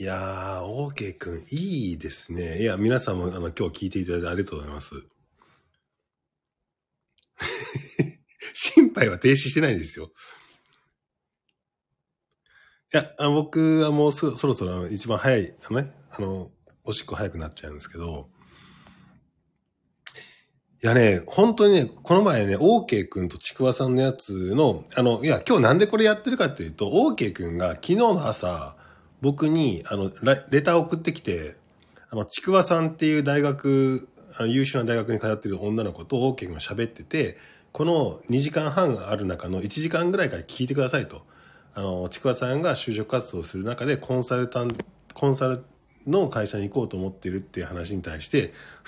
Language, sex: Japanese, male